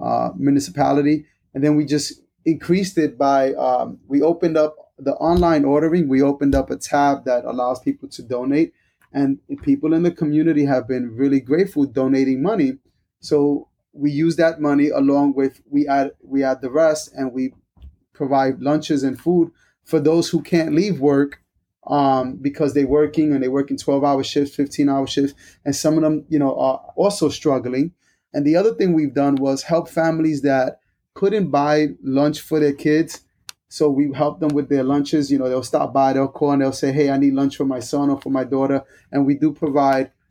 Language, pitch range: English, 135-155 Hz